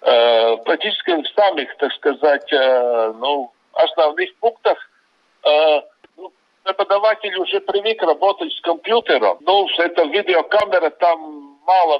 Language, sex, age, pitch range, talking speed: Russian, male, 50-69, 150-215 Hz, 100 wpm